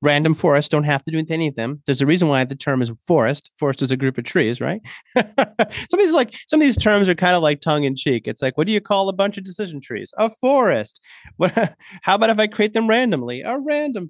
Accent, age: American, 30-49